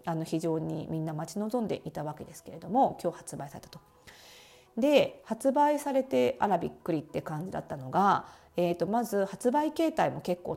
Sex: female